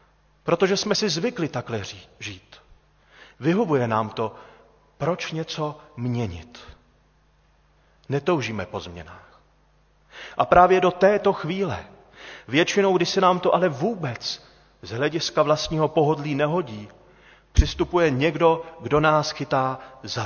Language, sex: Czech, male